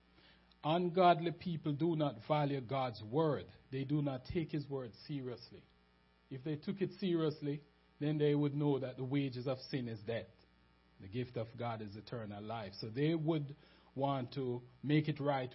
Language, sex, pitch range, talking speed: English, male, 110-155 Hz, 175 wpm